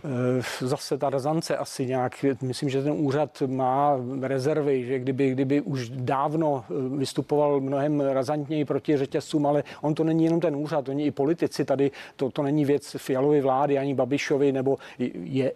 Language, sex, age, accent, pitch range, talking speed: Czech, male, 40-59, native, 130-145 Hz, 160 wpm